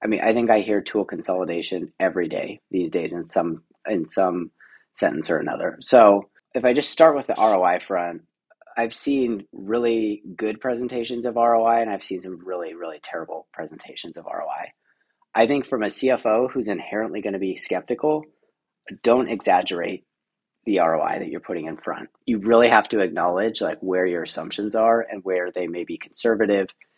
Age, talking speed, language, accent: 30-49, 180 wpm, English, American